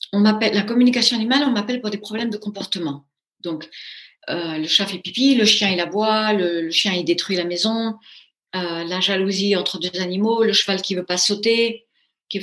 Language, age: French, 40-59